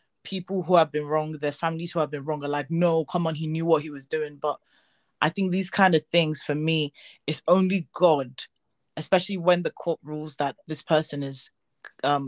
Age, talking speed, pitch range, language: 20-39, 215 wpm, 145-170 Hz, English